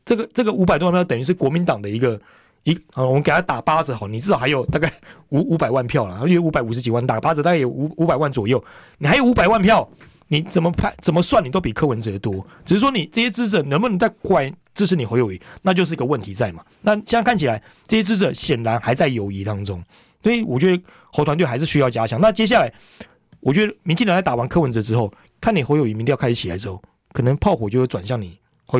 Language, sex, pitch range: Chinese, male, 115-175 Hz